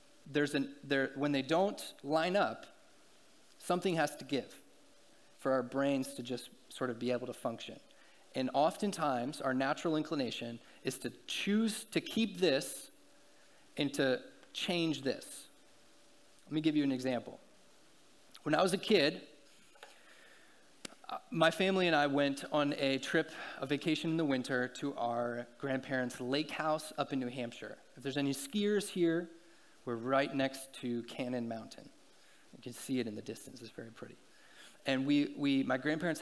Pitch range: 130-160 Hz